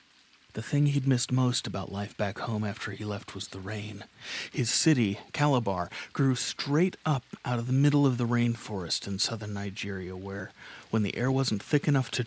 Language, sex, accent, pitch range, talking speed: English, male, American, 105-135 Hz, 190 wpm